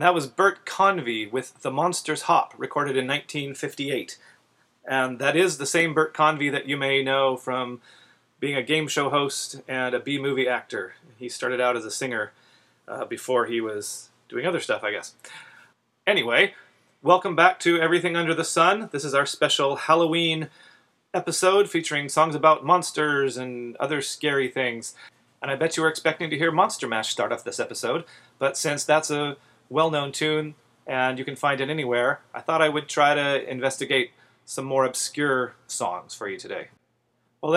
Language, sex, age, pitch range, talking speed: English, male, 30-49, 130-155 Hz, 175 wpm